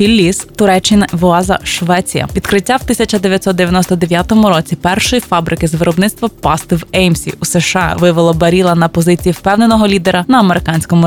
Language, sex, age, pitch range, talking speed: Ukrainian, female, 20-39, 170-200 Hz, 135 wpm